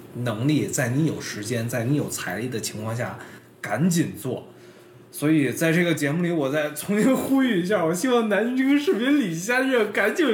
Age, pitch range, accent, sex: 20-39, 115-170 Hz, native, male